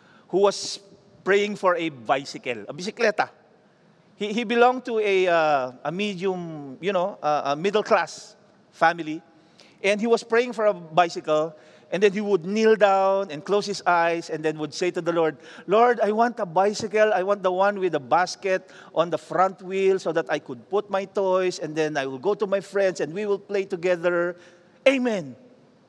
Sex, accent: male, Filipino